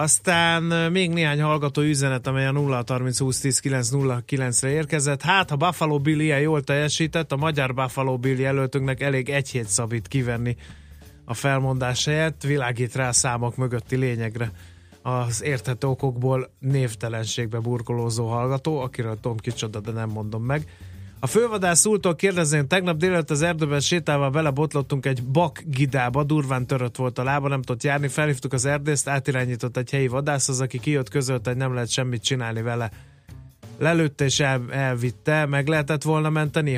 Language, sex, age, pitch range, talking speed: Hungarian, male, 30-49, 125-145 Hz, 150 wpm